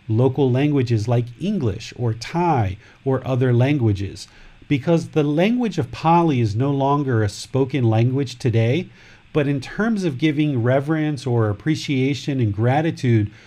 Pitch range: 115-155 Hz